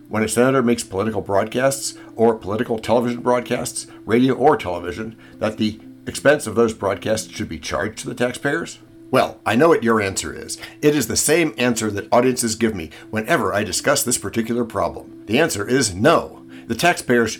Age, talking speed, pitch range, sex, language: 60-79, 185 wpm, 100-125 Hz, male, English